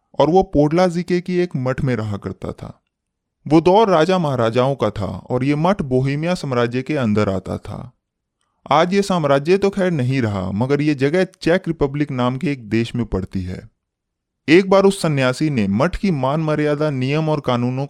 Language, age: Hindi, 20-39